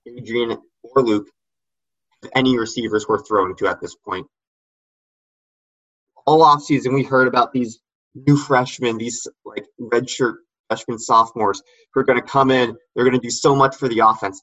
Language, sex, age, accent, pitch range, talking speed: English, male, 20-39, American, 110-135 Hz, 165 wpm